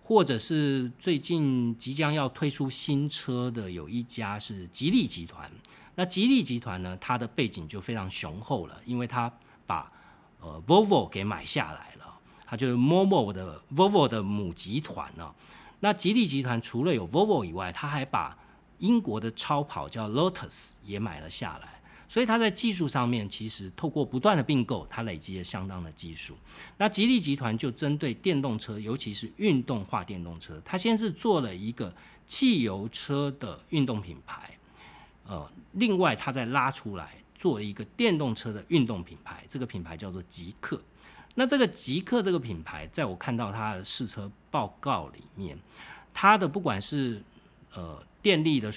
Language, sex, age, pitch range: Chinese, male, 40-59, 105-155 Hz